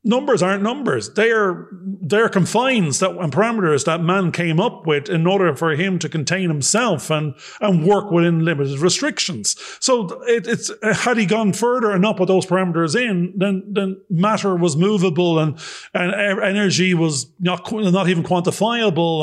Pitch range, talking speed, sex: 150-200 Hz, 170 wpm, male